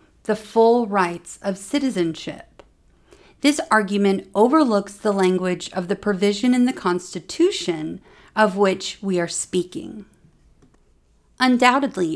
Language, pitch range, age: English, 180-215 Hz, 40-59